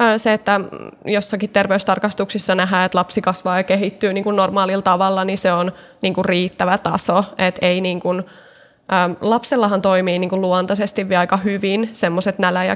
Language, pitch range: Finnish, 190-215 Hz